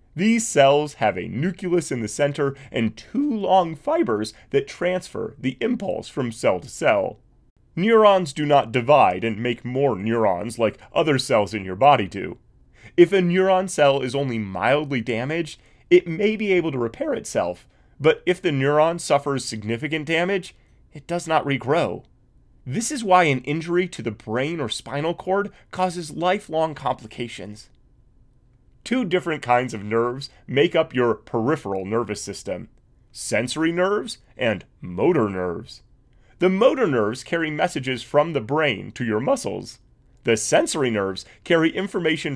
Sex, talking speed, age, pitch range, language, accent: male, 150 wpm, 30-49, 120-175 Hz, English, American